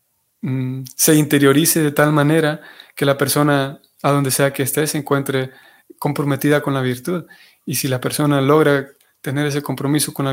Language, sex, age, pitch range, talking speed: Spanish, male, 20-39, 135-155 Hz, 170 wpm